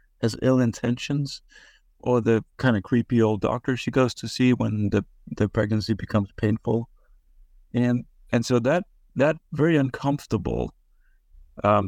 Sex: male